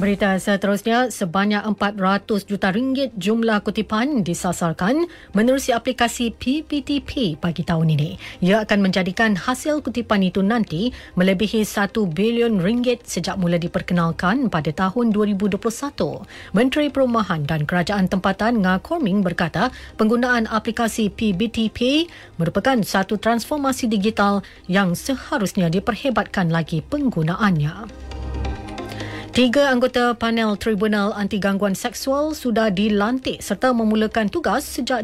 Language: English